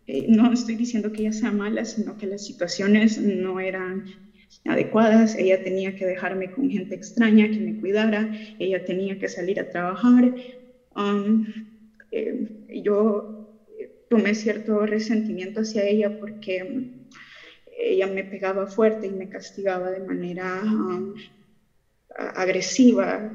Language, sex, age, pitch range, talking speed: Spanish, female, 20-39, 195-240 Hz, 135 wpm